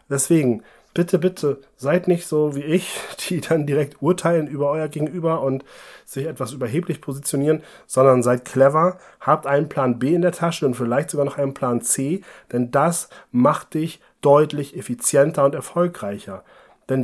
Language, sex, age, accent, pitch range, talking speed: German, male, 30-49, German, 125-170 Hz, 160 wpm